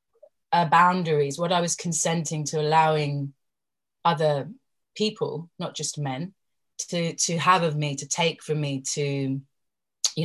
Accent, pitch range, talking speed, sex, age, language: British, 150-170 Hz, 140 wpm, female, 30-49, English